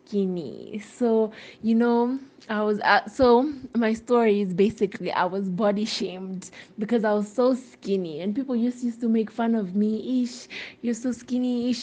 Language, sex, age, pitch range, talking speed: English, female, 20-39, 200-240 Hz, 165 wpm